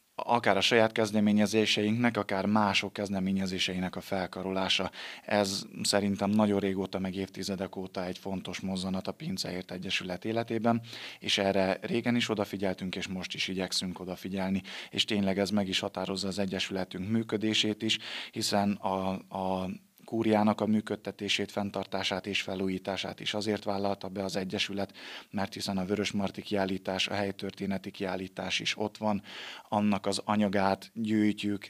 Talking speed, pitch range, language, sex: 140 wpm, 95-105 Hz, Hungarian, male